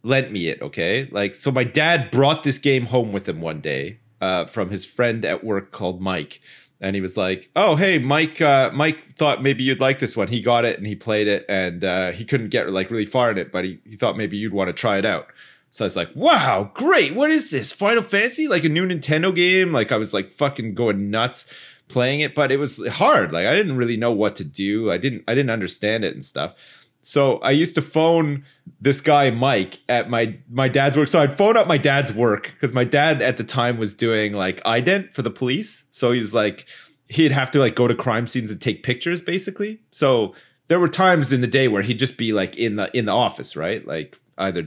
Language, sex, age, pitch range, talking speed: English, male, 30-49, 105-145 Hz, 245 wpm